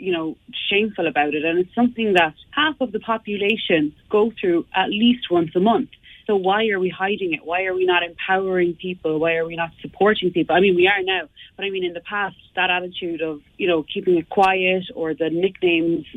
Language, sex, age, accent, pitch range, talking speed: English, female, 30-49, Irish, 165-195 Hz, 225 wpm